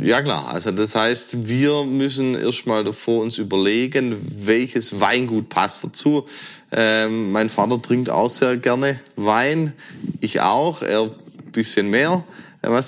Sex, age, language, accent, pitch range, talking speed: male, 20-39, German, German, 110-125 Hz, 145 wpm